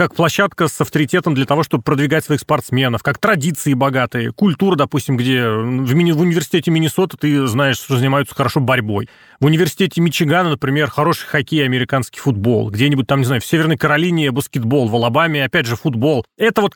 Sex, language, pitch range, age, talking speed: male, Russian, 135-175 Hz, 30-49, 170 wpm